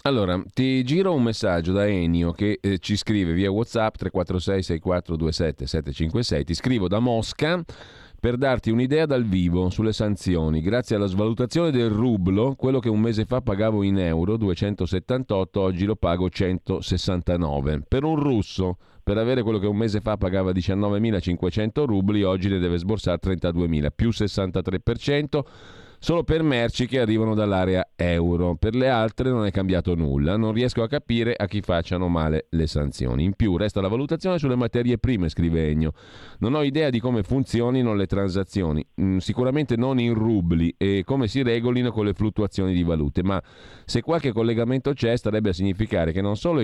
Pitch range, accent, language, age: 90-115 Hz, native, Italian, 40-59